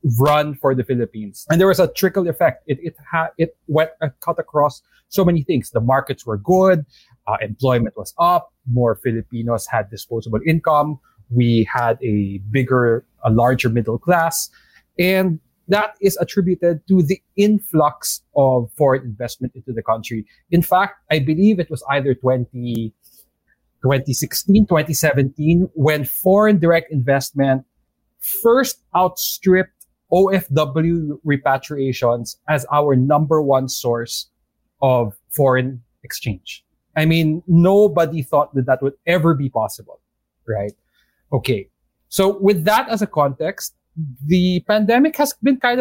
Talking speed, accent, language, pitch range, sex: 135 wpm, Filipino, English, 125-180 Hz, male